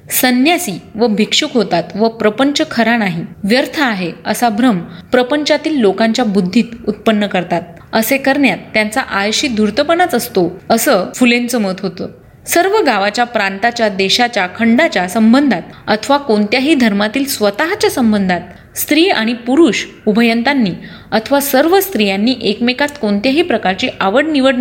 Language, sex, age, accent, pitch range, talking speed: Marathi, female, 30-49, native, 205-265 Hz, 95 wpm